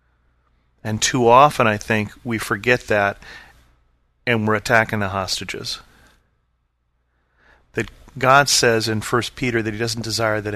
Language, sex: English, male